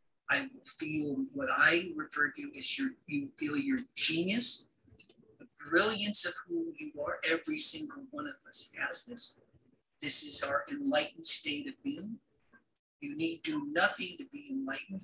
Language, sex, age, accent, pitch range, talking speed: English, male, 50-69, American, 190-295 Hz, 155 wpm